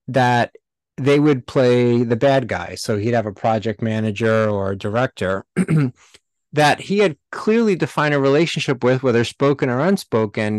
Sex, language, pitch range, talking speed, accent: male, English, 115-150 Hz, 160 wpm, American